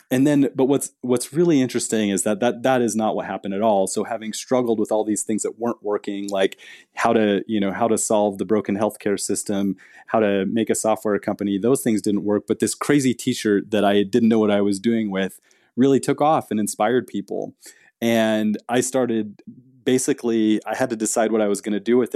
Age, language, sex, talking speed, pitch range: 20-39, English, male, 225 wpm, 100-115 Hz